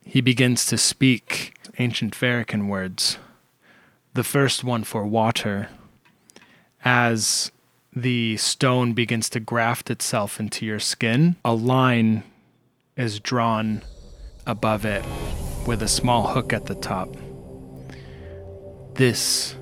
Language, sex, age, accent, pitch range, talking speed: English, male, 20-39, American, 105-125 Hz, 110 wpm